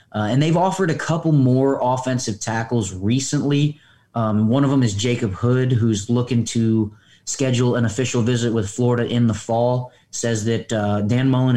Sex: male